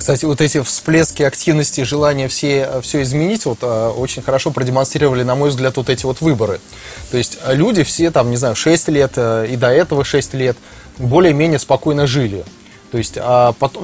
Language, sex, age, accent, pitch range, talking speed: Russian, male, 20-39, native, 115-155 Hz, 175 wpm